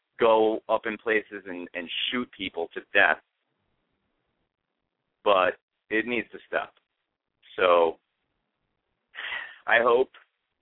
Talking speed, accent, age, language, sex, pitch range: 100 wpm, American, 40-59, English, male, 120-165 Hz